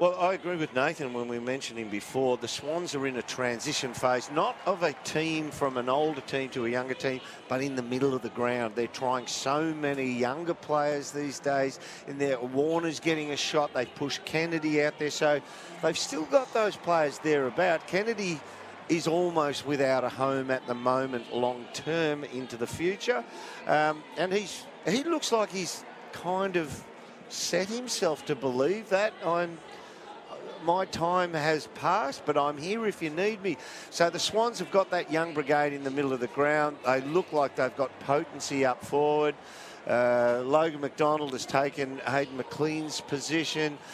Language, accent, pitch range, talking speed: English, Australian, 135-170 Hz, 180 wpm